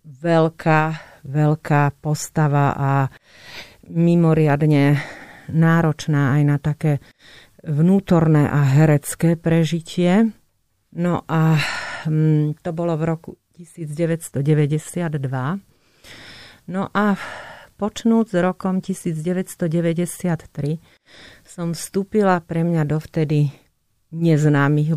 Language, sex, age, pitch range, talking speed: Slovak, female, 40-59, 145-170 Hz, 75 wpm